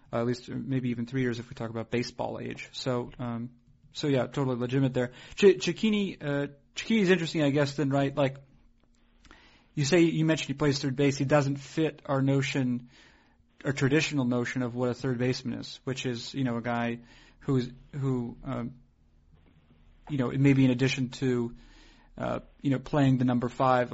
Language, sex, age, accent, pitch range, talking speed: English, male, 30-49, American, 120-140 Hz, 190 wpm